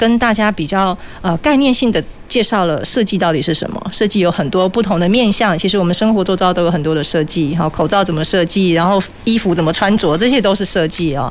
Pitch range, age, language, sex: 175-220 Hz, 30-49, Chinese, female